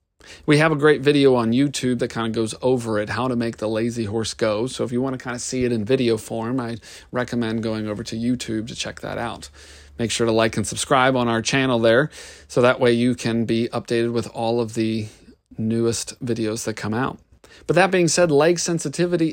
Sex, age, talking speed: male, 40-59, 230 wpm